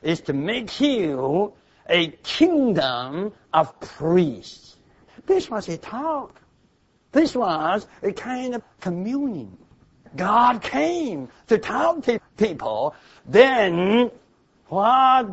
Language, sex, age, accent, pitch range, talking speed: English, male, 60-79, American, 160-250 Hz, 100 wpm